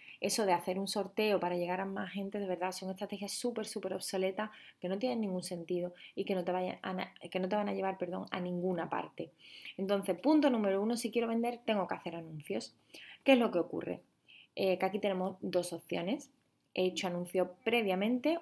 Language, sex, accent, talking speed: Spanish, female, Spanish, 205 wpm